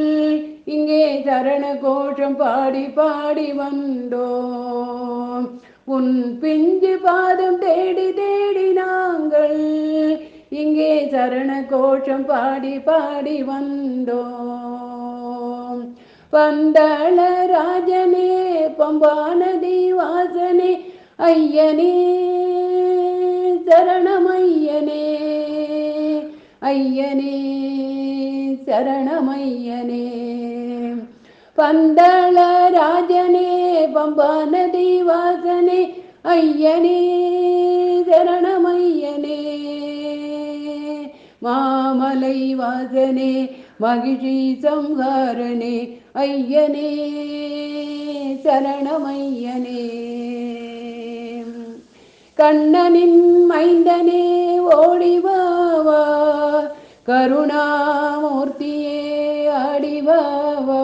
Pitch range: 265-345 Hz